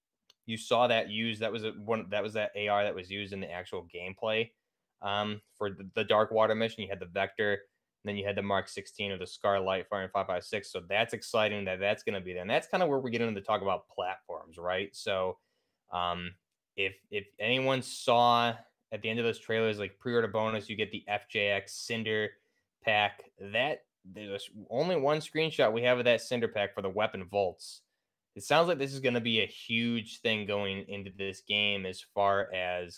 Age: 20-39